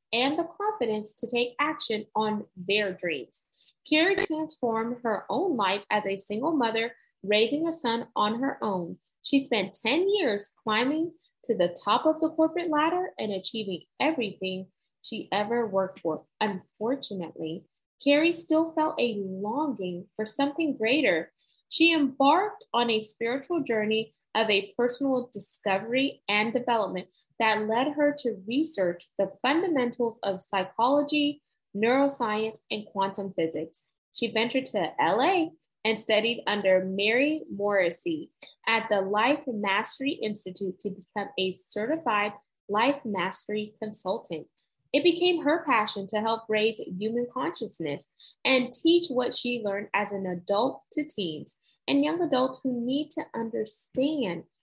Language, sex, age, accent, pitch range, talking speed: English, female, 20-39, American, 200-285 Hz, 135 wpm